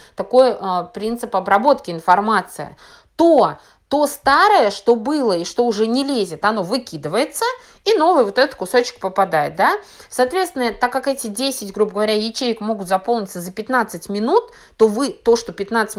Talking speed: 150 wpm